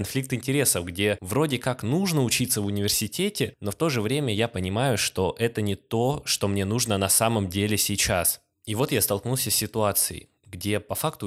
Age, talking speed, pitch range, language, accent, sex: 20-39, 190 wpm, 100-120 Hz, Russian, native, male